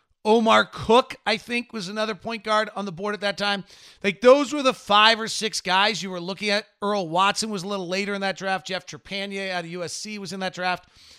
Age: 40-59